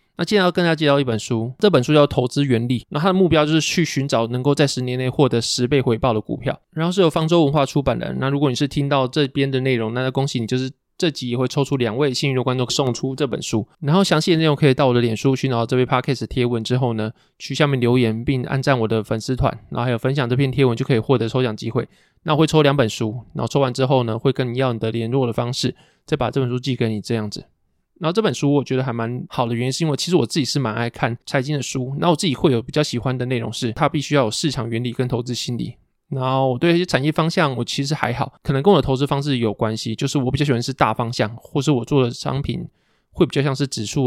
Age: 20-39